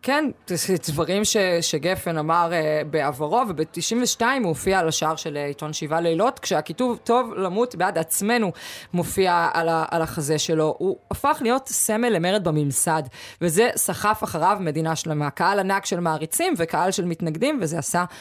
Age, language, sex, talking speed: 20-39, Hebrew, female, 160 wpm